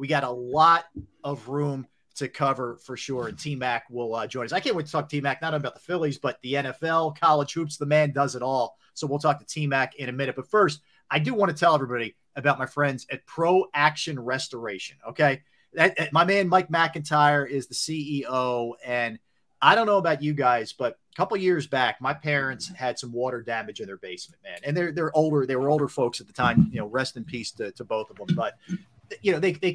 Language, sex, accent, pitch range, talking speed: English, male, American, 130-155 Hz, 240 wpm